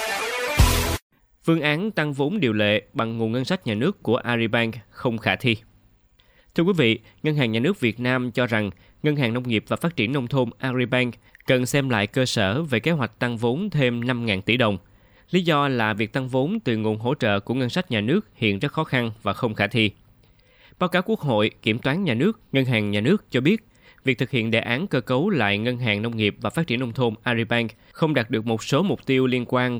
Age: 20-39